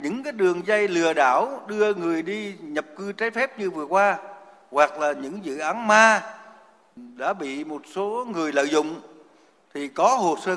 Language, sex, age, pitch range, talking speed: Vietnamese, male, 60-79, 145-210 Hz, 185 wpm